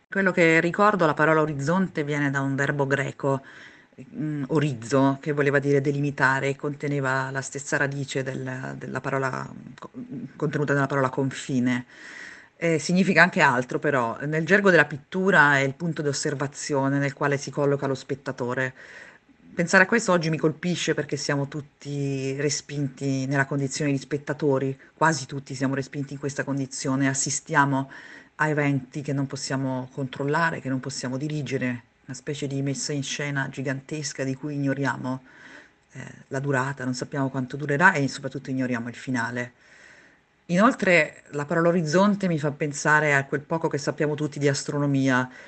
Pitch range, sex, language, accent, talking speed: 135-150 Hz, female, Italian, native, 150 wpm